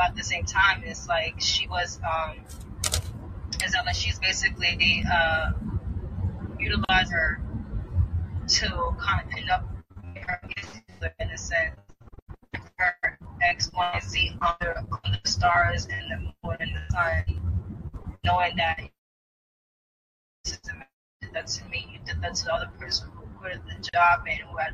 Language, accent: English, American